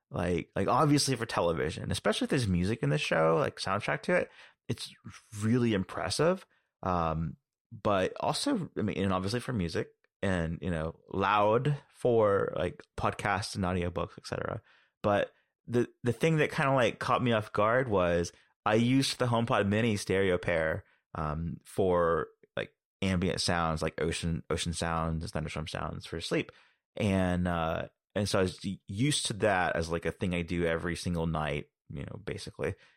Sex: male